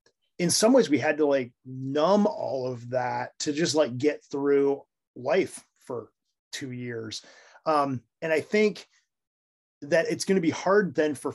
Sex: male